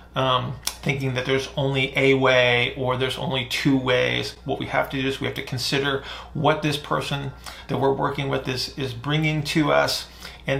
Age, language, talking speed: 40-59, English, 200 wpm